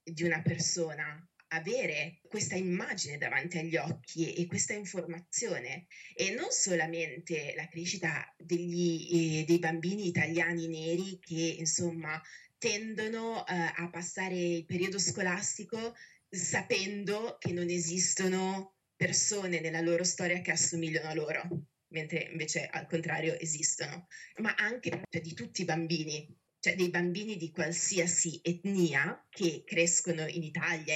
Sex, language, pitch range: female, Italian, 165-185 Hz